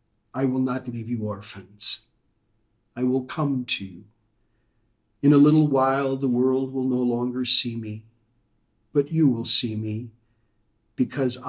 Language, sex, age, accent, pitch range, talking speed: English, male, 40-59, American, 110-140 Hz, 145 wpm